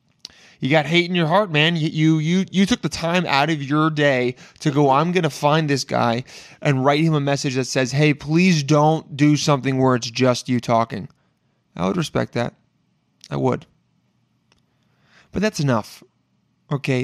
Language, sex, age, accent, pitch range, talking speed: English, male, 20-39, American, 125-160 Hz, 185 wpm